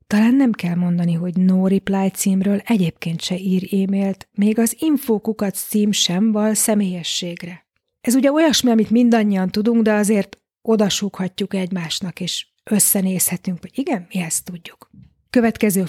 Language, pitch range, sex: Hungarian, 185-225 Hz, female